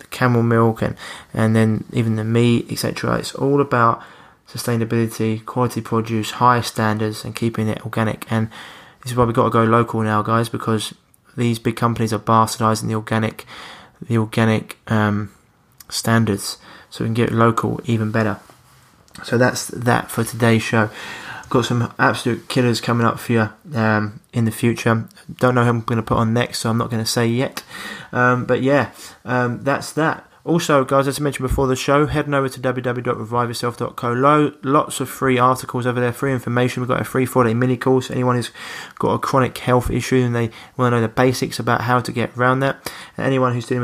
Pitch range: 110-125 Hz